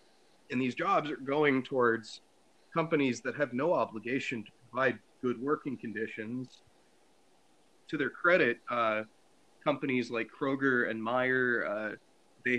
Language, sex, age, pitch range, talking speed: English, male, 20-39, 110-130 Hz, 130 wpm